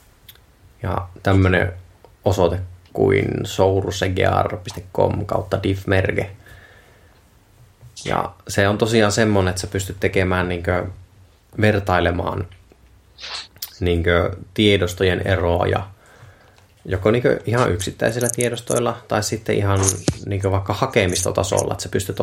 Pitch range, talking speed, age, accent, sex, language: 95-105 Hz, 90 wpm, 20-39, native, male, Finnish